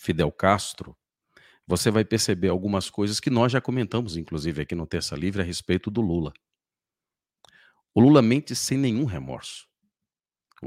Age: 50-69